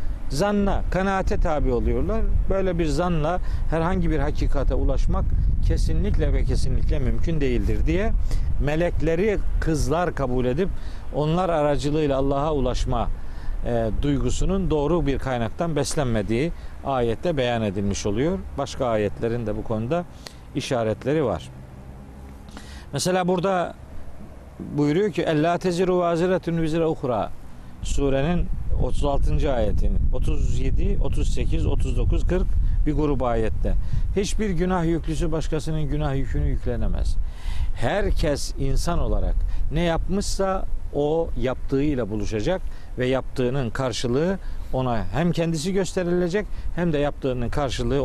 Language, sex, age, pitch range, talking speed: Turkish, male, 50-69, 105-165 Hz, 100 wpm